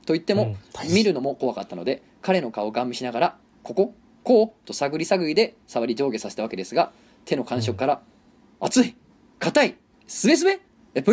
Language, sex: Japanese, male